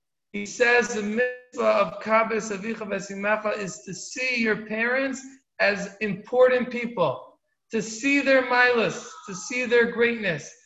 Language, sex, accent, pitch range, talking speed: English, male, American, 195-235 Hz, 130 wpm